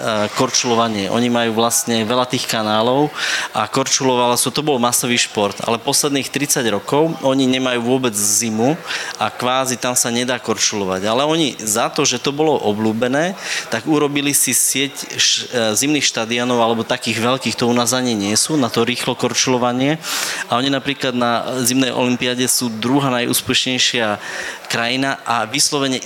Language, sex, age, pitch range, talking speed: Slovak, male, 20-39, 115-130 Hz, 150 wpm